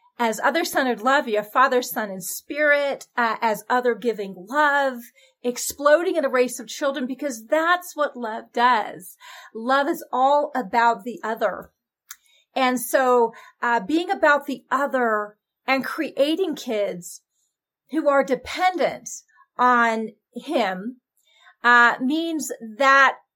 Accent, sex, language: American, female, English